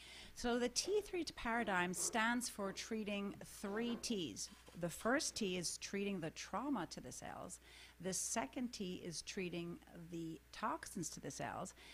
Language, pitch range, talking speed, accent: English, 170-235 Hz, 145 wpm, American